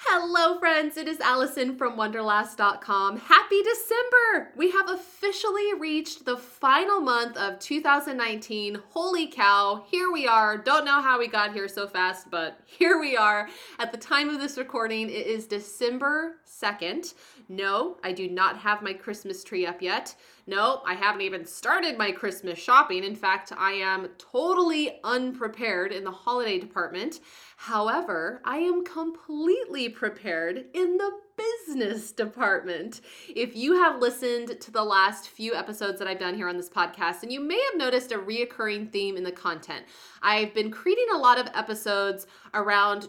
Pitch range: 200-280 Hz